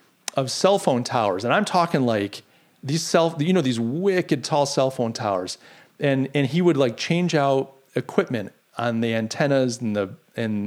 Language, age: English, 40-59